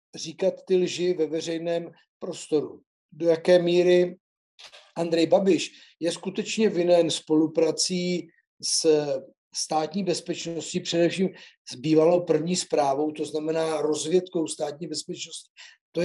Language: Slovak